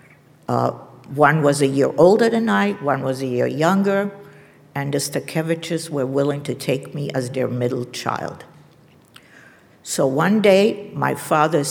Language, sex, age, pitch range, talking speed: English, female, 60-79, 135-165 Hz, 155 wpm